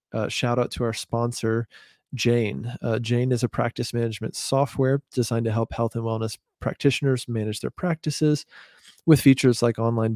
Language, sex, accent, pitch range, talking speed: English, male, American, 110-130 Hz, 165 wpm